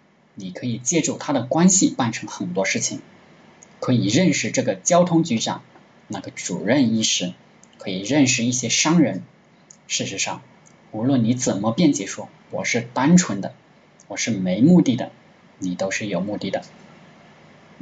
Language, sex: Chinese, male